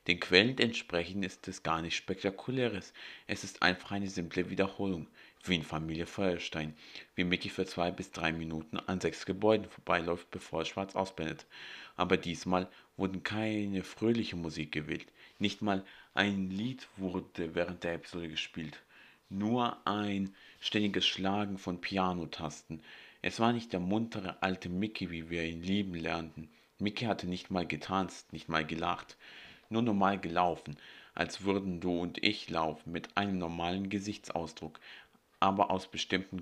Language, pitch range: German, 85-100 Hz